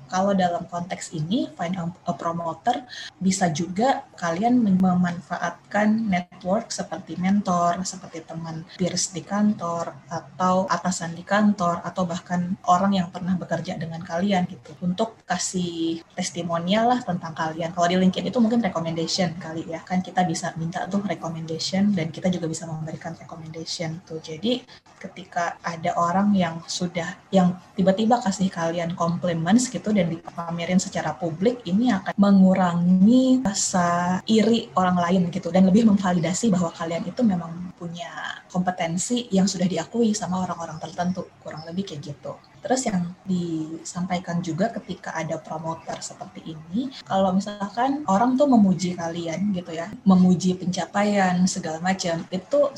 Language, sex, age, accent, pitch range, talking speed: English, female, 20-39, Indonesian, 170-195 Hz, 140 wpm